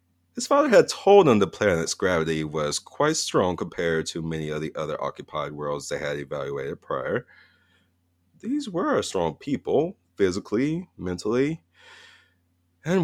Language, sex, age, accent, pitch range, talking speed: English, male, 30-49, American, 85-130 Hz, 140 wpm